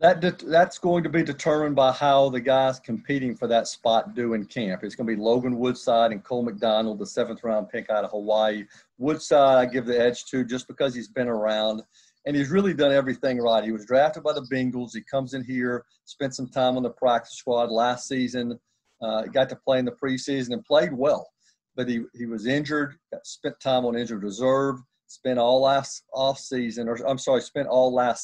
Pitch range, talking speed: 115-135 Hz, 215 wpm